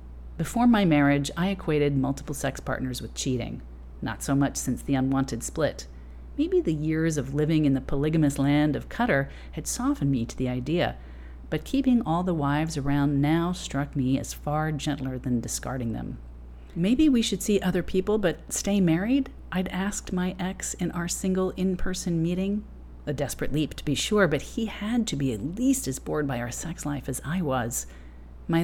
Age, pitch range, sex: 40-59, 130-175 Hz, female